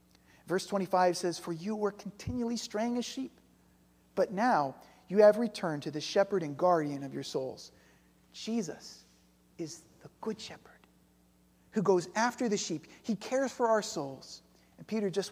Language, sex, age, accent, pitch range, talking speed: English, male, 40-59, American, 160-245 Hz, 160 wpm